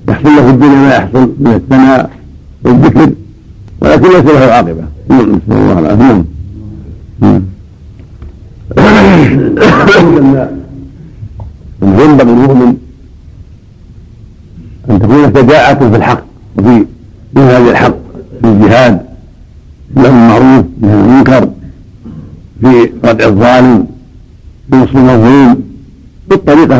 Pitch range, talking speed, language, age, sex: 90-125 Hz, 85 wpm, Arabic, 60-79, male